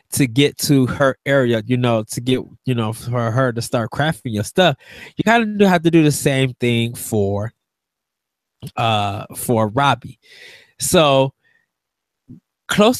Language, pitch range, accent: English, 125-155 Hz, American